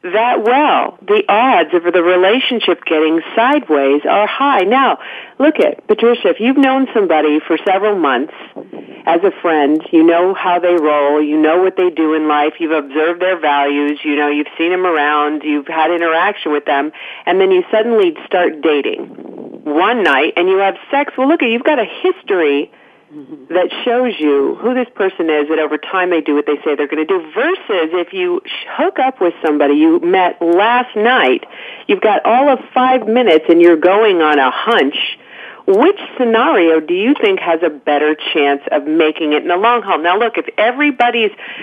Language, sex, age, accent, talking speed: English, female, 40-59, American, 190 wpm